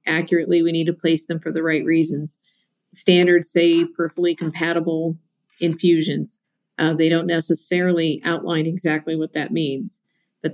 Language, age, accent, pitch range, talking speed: English, 50-69, American, 155-175 Hz, 140 wpm